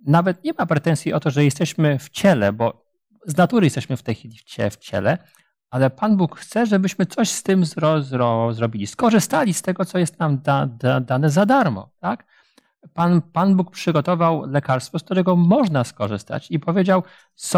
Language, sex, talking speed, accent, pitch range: Polish, male, 165 wpm, native, 130-175 Hz